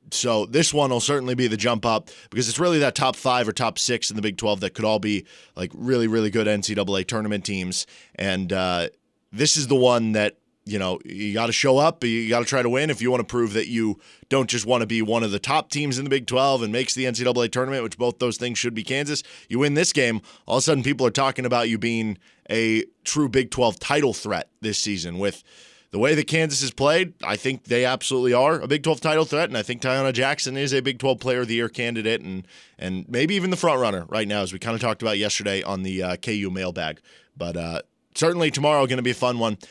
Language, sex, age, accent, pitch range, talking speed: English, male, 20-39, American, 110-135 Hz, 255 wpm